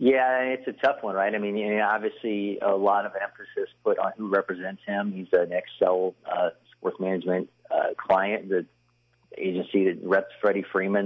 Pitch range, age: 95-105 Hz, 30-49